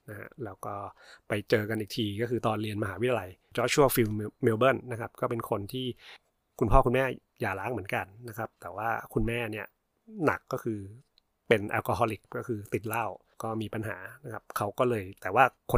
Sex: male